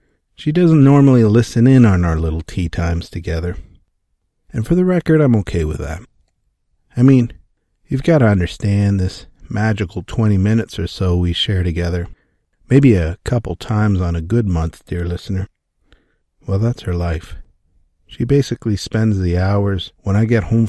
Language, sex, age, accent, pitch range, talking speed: English, male, 50-69, American, 90-140 Hz, 165 wpm